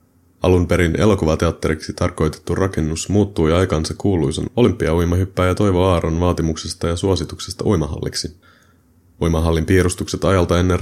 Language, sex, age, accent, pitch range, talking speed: Finnish, male, 30-49, native, 80-95 Hz, 105 wpm